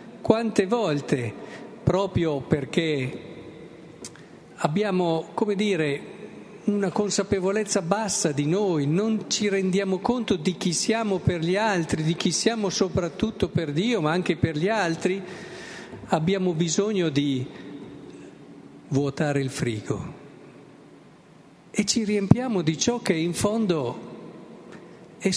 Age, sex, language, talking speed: 50-69, male, Italian, 115 wpm